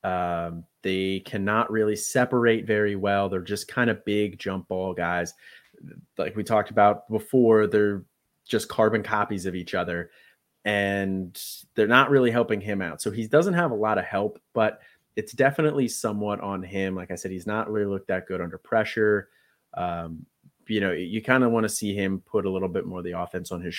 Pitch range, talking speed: 95-110 Hz, 200 wpm